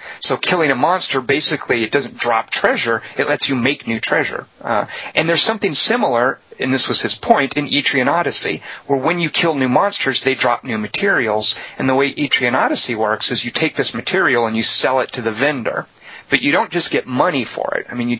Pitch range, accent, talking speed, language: 120-145 Hz, American, 220 wpm, English